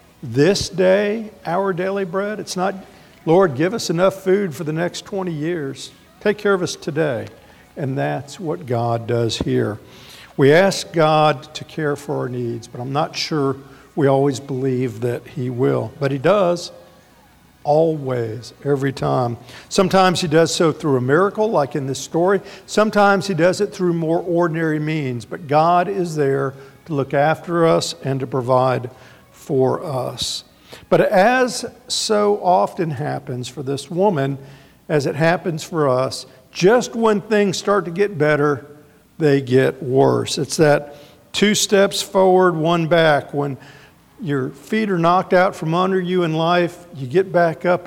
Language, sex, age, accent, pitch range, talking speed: English, male, 50-69, American, 140-185 Hz, 160 wpm